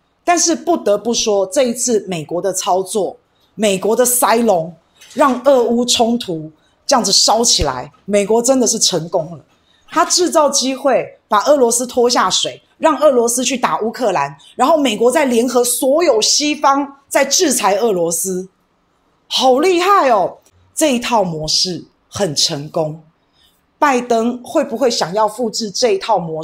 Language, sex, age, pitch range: Chinese, female, 20-39, 190-260 Hz